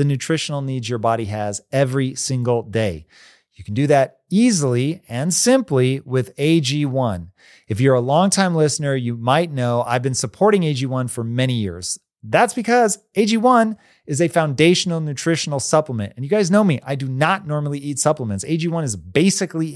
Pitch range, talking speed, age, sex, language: 120-165 Hz, 165 wpm, 30-49, male, English